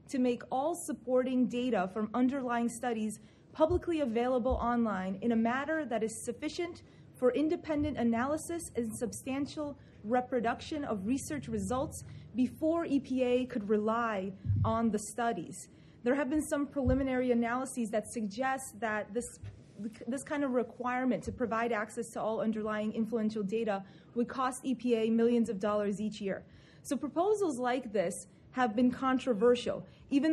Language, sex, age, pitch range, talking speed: English, female, 30-49, 225-265 Hz, 140 wpm